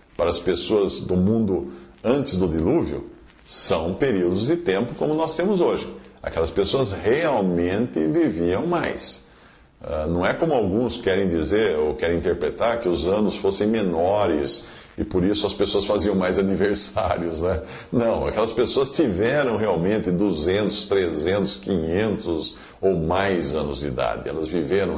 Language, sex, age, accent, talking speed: English, male, 50-69, Brazilian, 140 wpm